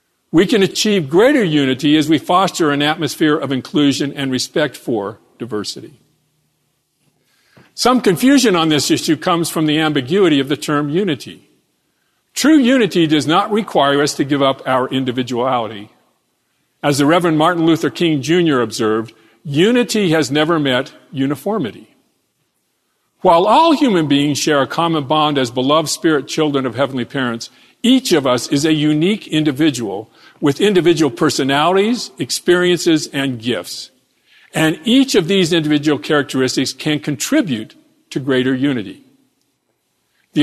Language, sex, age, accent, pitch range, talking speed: English, male, 50-69, American, 140-180 Hz, 140 wpm